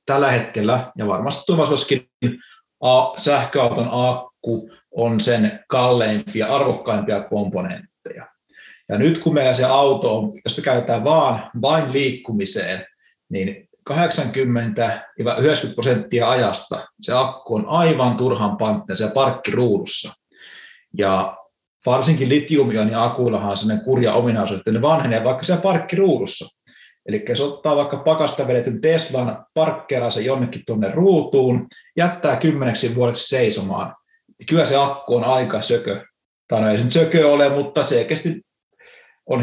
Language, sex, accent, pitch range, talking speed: Finnish, male, native, 120-160 Hz, 115 wpm